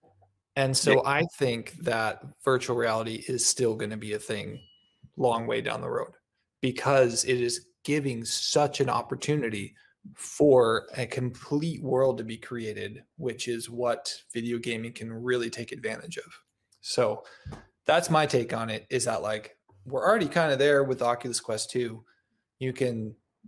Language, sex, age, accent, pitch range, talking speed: English, male, 20-39, American, 115-135 Hz, 160 wpm